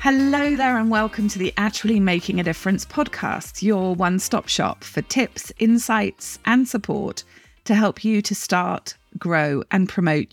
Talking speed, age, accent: 155 wpm, 40-59, British